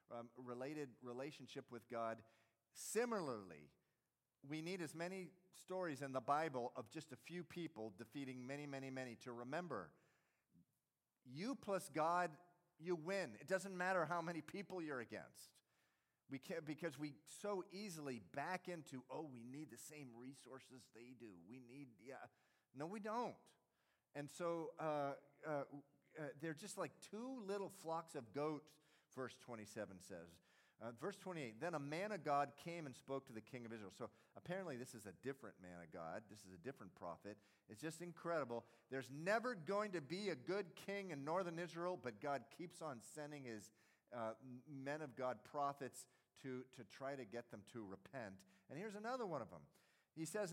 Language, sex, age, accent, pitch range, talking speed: English, male, 40-59, American, 120-170 Hz, 175 wpm